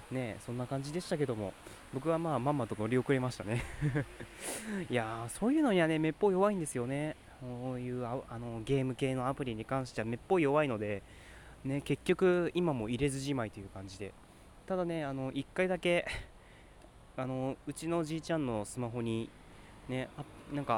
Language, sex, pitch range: Japanese, male, 115-150 Hz